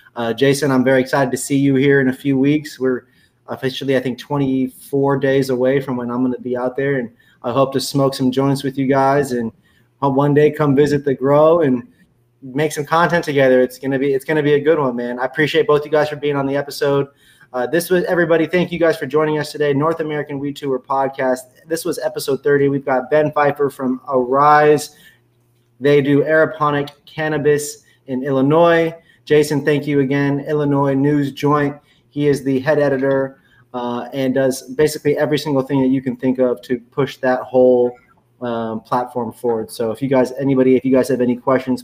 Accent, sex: American, male